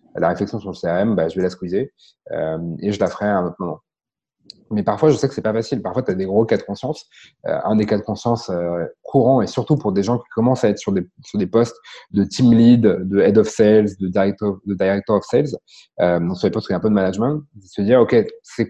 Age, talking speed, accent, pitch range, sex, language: 30-49, 285 wpm, French, 95-115 Hz, male, French